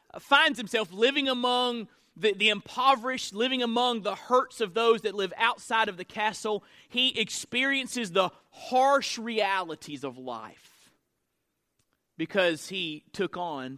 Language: English